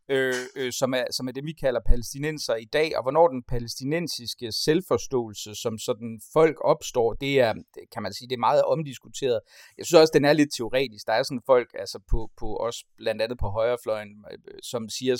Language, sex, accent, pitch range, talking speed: Danish, male, native, 115-145 Hz, 195 wpm